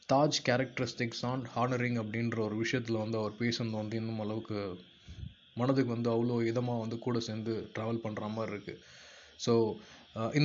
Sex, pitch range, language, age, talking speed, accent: male, 110-130 Hz, Tamil, 20-39, 150 wpm, native